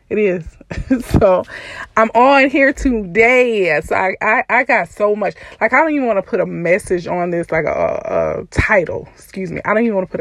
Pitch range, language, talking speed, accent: 180-225 Hz, English, 220 wpm, American